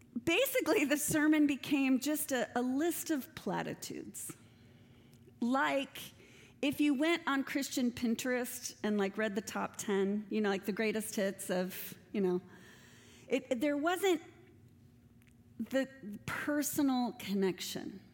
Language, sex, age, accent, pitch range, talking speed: English, female, 40-59, American, 185-260 Hz, 125 wpm